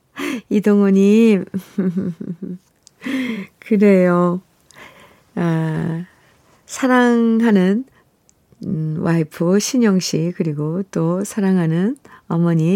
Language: Korean